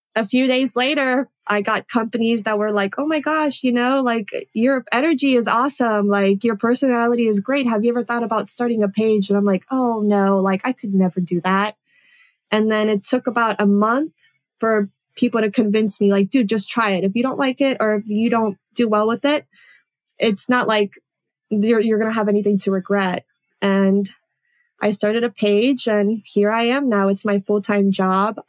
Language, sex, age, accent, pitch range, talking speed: English, female, 20-39, American, 200-235 Hz, 210 wpm